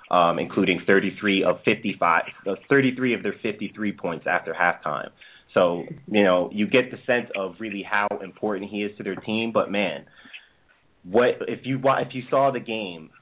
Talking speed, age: 175 wpm, 30-49